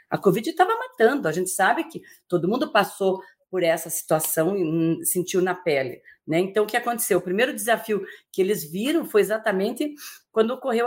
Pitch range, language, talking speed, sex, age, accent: 175-245 Hz, Portuguese, 180 wpm, female, 40-59, Brazilian